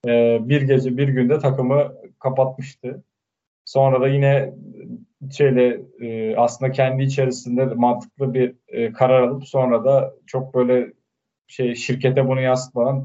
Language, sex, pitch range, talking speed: Turkish, male, 120-140 Hz, 130 wpm